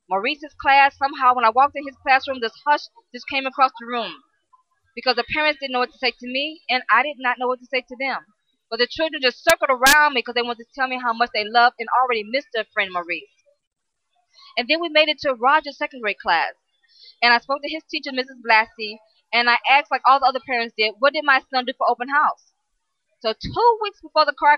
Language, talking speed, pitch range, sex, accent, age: English, 245 wpm, 235-305 Hz, female, American, 20-39